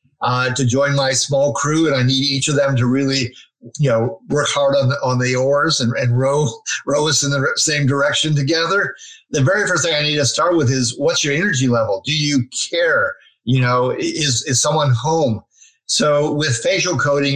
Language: English